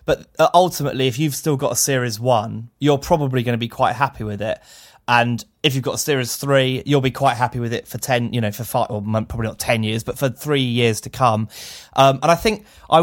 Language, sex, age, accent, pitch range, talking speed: English, male, 20-39, British, 115-140 Hz, 245 wpm